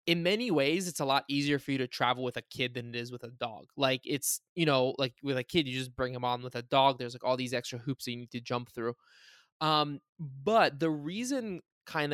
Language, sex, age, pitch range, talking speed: English, male, 20-39, 125-155 Hz, 260 wpm